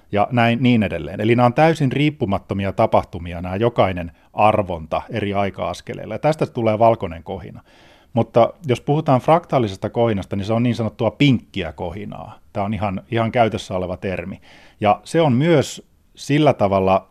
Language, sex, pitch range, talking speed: Finnish, male, 95-120 Hz, 160 wpm